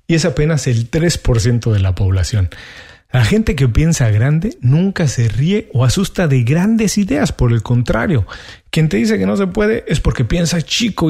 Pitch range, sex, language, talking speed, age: 115-170 Hz, male, Spanish, 190 wpm, 40-59